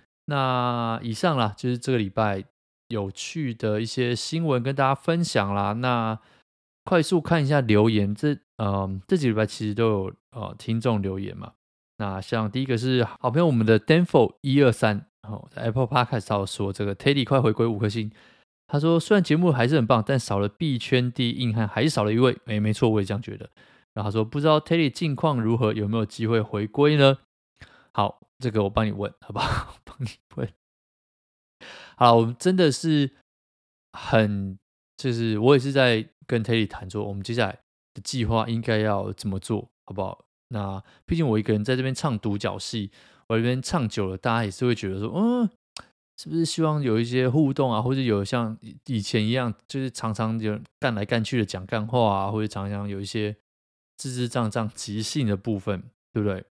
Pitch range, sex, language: 105-130 Hz, male, Chinese